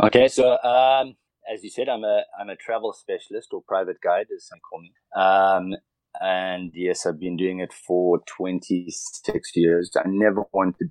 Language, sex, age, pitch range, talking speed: English, male, 30-49, 95-125 Hz, 175 wpm